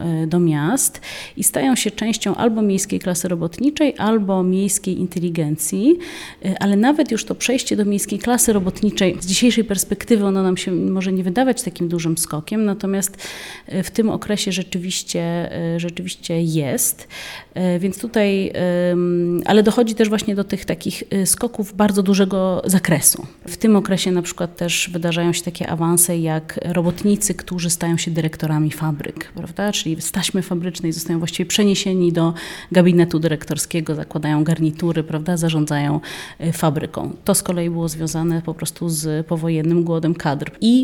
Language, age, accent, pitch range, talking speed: Polish, 30-49, native, 165-195 Hz, 145 wpm